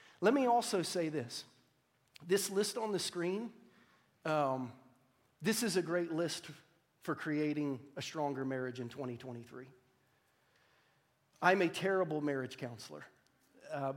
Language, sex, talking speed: English, male, 125 wpm